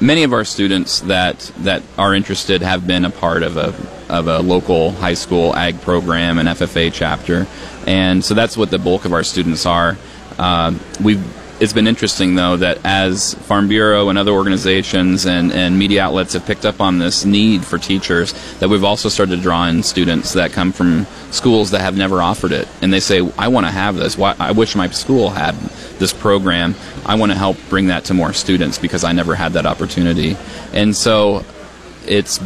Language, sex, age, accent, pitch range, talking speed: English, male, 30-49, American, 85-100 Hz, 205 wpm